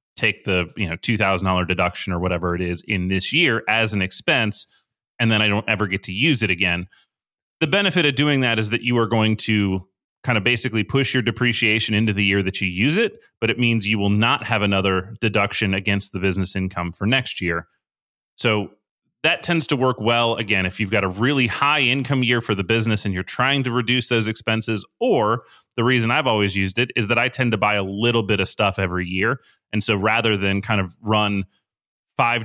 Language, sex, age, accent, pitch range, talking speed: English, male, 30-49, American, 95-115 Hz, 215 wpm